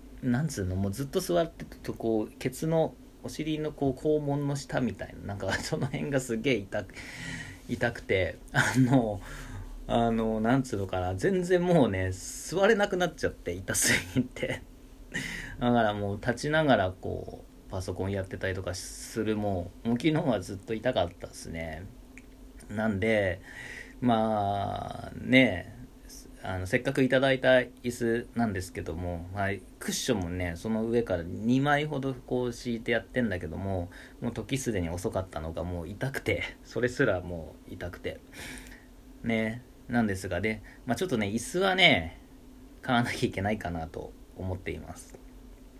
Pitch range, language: 95-130 Hz, Japanese